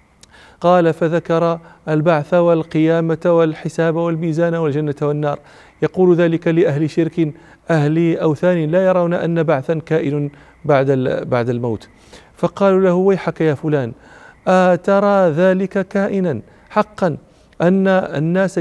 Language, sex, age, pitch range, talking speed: English, male, 40-59, 155-185 Hz, 105 wpm